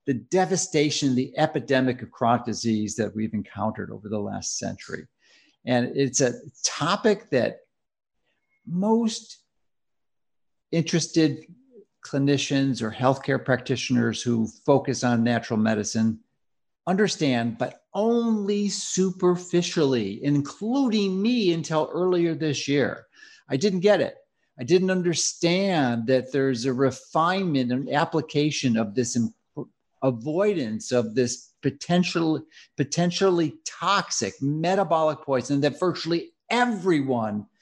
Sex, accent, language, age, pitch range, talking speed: male, American, English, 50-69, 120-170 Hz, 105 wpm